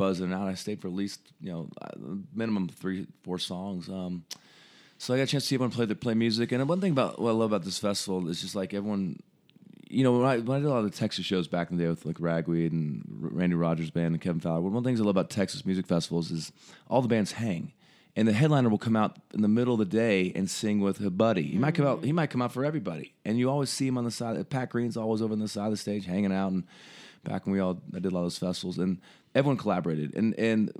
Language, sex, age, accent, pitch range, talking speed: English, male, 30-49, American, 90-120 Hz, 285 wpm